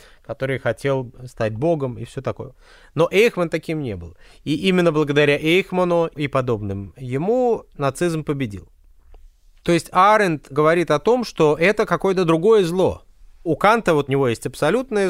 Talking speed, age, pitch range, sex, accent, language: 155 wpm, 30-49, 120-180 Hz, male, native, Russian